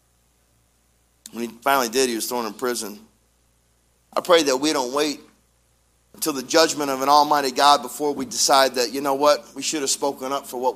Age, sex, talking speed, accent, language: 40-59, male, 200 wpm, American, English